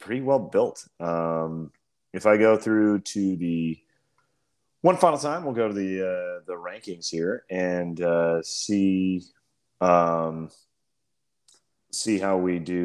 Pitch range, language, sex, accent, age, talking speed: 90-115 Hz, English, male, American, 30-49, 135 wpm